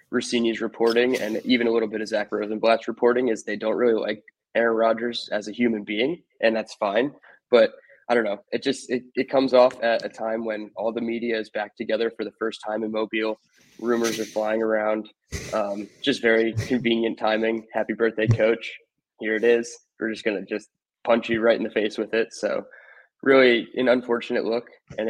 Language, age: English, 20-39